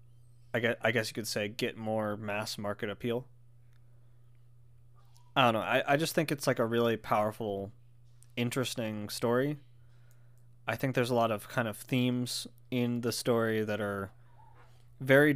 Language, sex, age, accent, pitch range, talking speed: English, male, 20-39, American, 115-130 Hz, 150 wpm